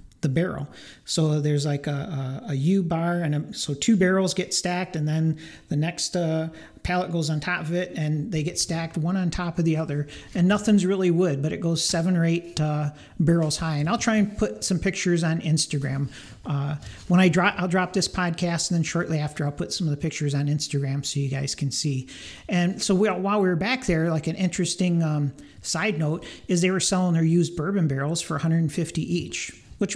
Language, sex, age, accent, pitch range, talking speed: English, male, 40-59, American, 150-180 Hz, 220 wpm